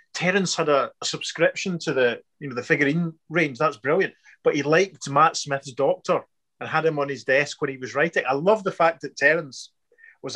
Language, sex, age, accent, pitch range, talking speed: English, male, 30-49, British, 125-165 Hz, 210 wpm